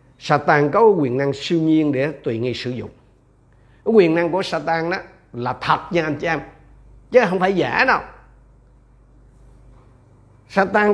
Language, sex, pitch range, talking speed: Vietnamese, male, 130-190 Hz, 155 wpm